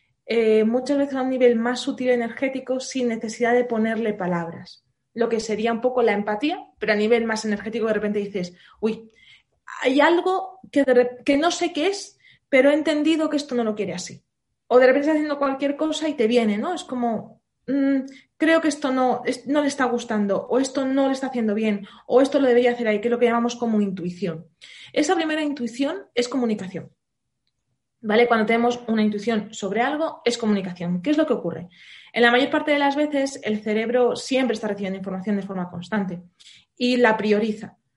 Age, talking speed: 20-39, 200 wpm